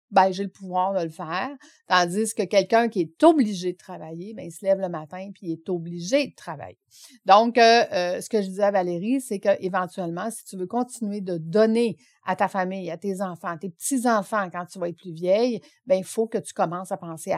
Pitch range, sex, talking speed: 180-230 Hz, female, 225 wpm